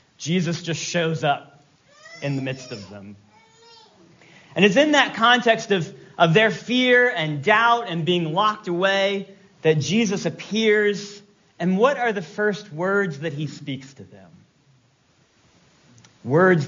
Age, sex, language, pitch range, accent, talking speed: 40-59, male, English, 155-210 Hz, American, 140 wpm